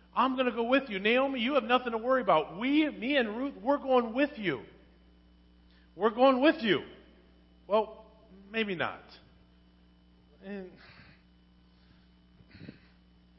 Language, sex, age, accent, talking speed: English, male, 40-59, American, 130 wpm